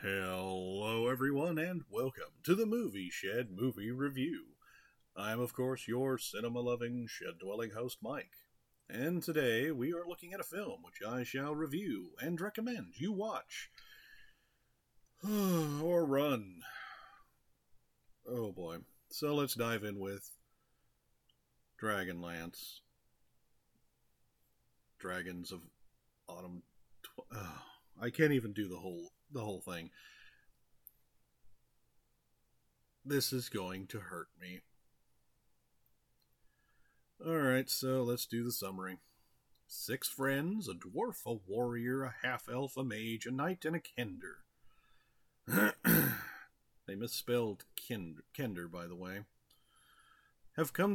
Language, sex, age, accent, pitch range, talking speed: English, male, 40-59, American, 105-145 Hz, 110 wpm